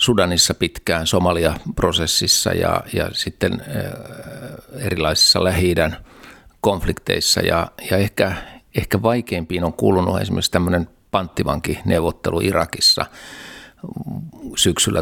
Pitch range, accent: 85-105 Hz, native